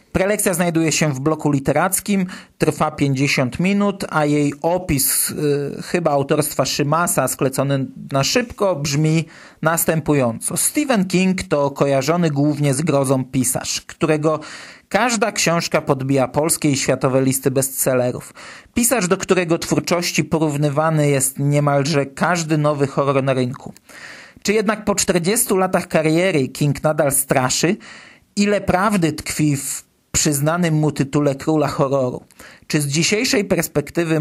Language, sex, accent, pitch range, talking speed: Polish, male, native, 140-180 Hz, 125 wpm